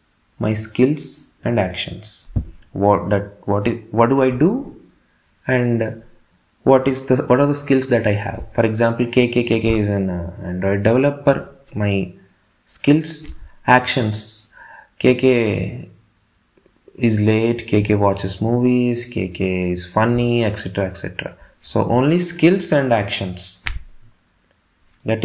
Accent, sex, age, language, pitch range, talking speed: native, male, 20-39, Telugu, 95-120 Hz, 120 wpm